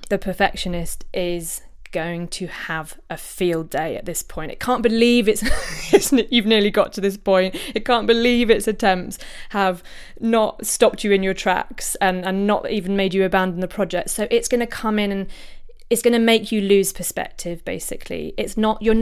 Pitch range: 190-245 Hz